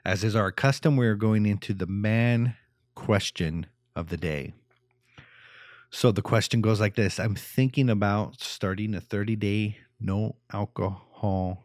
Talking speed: 145 wpm